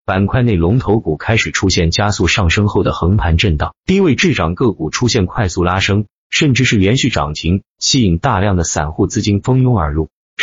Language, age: Chinese, 30-49